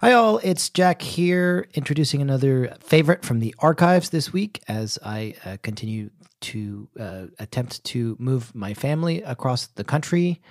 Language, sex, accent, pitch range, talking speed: English, male, American, 115-160 Hz, 155 wpm